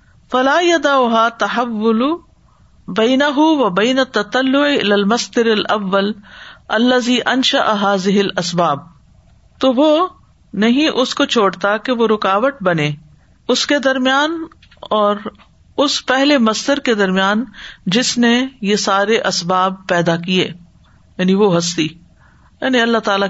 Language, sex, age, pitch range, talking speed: Urdu, female, 50-69, 180-245 Hz, 115 wpm